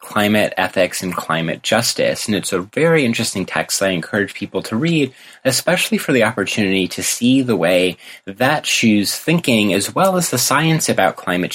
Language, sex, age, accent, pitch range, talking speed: English, male, 30-49, American, 95-130 Hz, 175 wpm